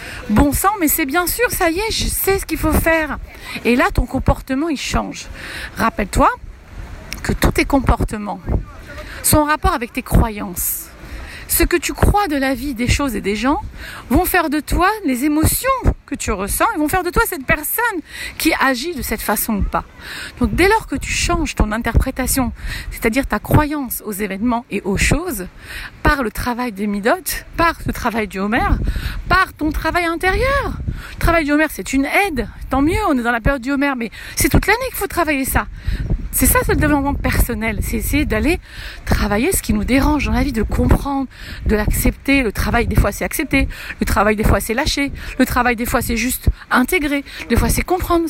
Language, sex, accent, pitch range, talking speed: French, female, French, 245-335 Hz, 205 wpm